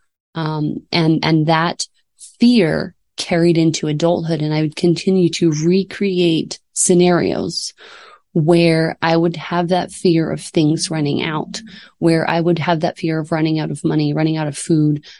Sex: female